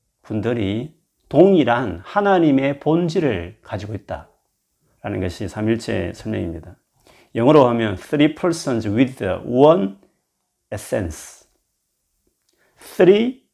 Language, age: Korean, 40-59